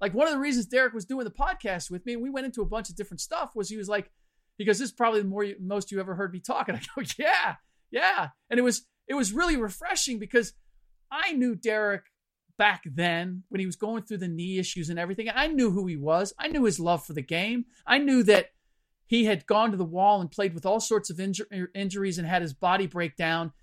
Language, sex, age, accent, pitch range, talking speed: English, male, 40-59, American, 180-225 Hz, 255 wpm